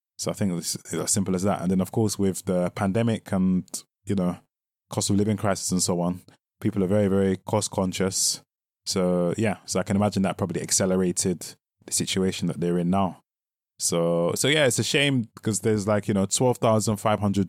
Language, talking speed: English, 200 wpm